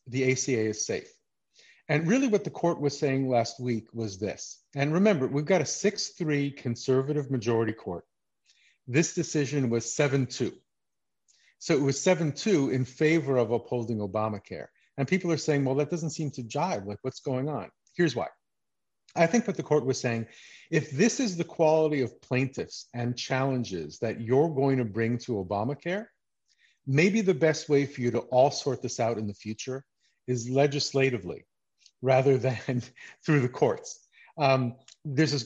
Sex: male